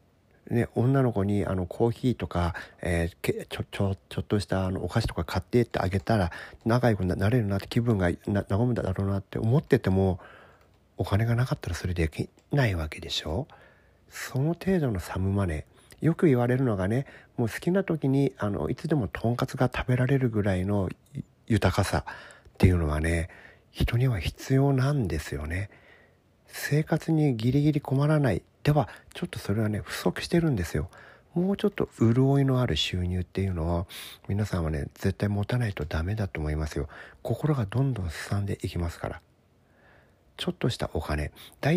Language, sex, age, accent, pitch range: Japanese, male, 40-59, native, 90-130 Hz